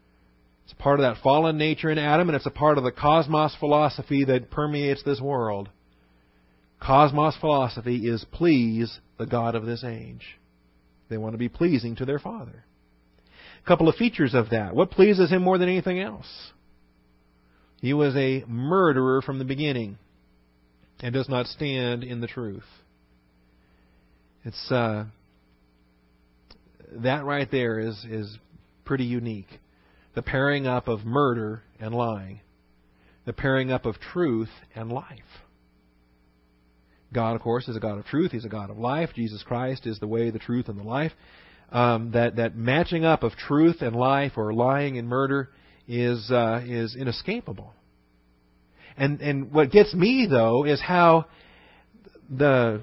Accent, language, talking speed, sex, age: American, English, 155 wpm, male, 40-59